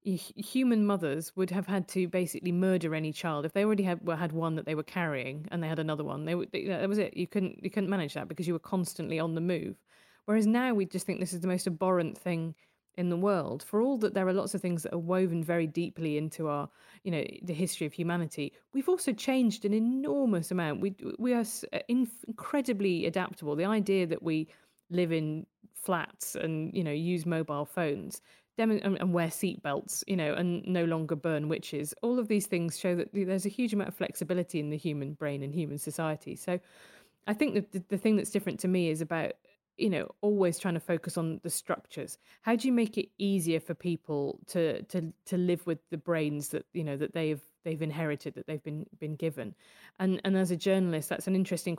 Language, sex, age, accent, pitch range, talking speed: English, female, 30-49, British, 160-195 Hz, 220 wpm